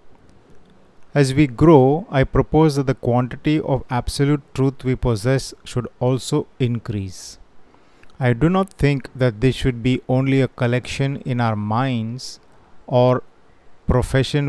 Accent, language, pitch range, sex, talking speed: native, Hindi, 115-135 Hz, male, 135 wpm